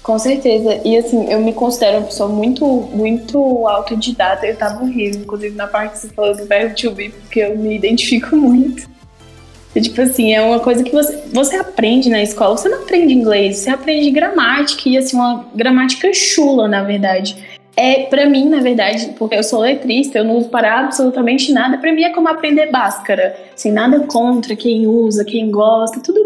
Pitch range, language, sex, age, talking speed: 215-260 Hz, Portuguese, female, 10-29, 195 wpm